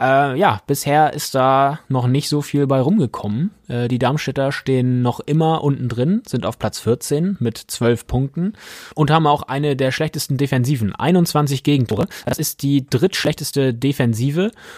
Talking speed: 160 wpm